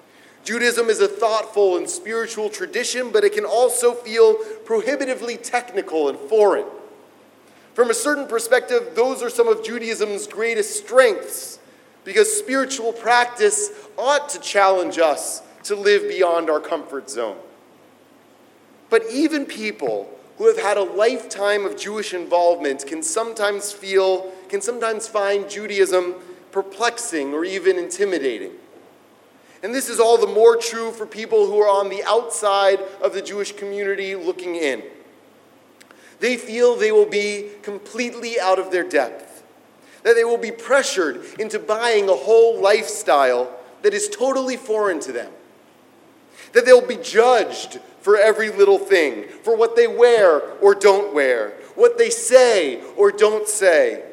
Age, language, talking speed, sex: 30-49, English, 145 wpm, male